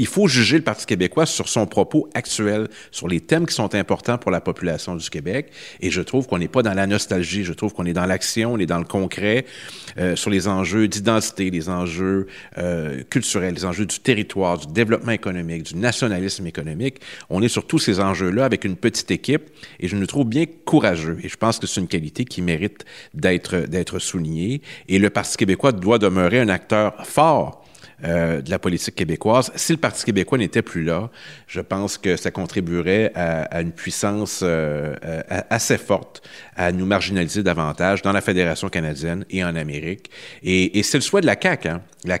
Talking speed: 205 wpm